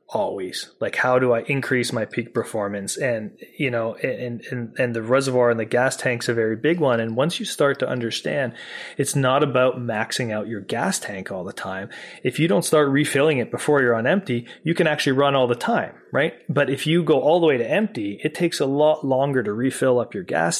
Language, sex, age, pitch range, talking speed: English, male, 30-49, 120-140 Hz, 230 wpm